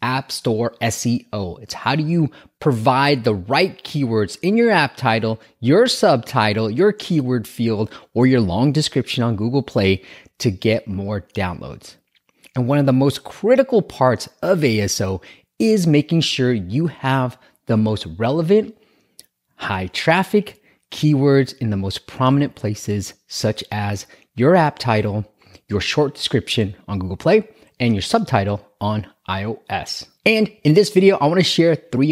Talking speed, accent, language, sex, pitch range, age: 150 wpm, American, English, male, 110-160 Hz, 30-49